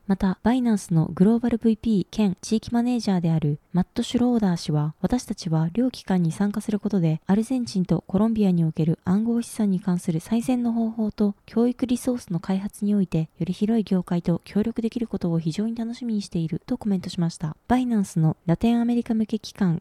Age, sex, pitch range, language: 20-39, female, 175-225 Hz, Japanese